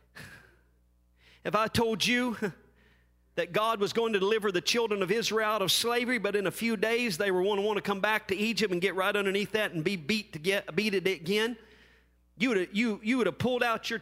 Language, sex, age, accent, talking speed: English, male, 40-59, American, 225 wpm